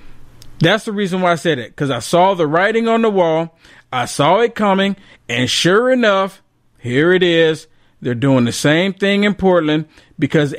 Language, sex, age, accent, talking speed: English, male, 40-59, American, 185 wpm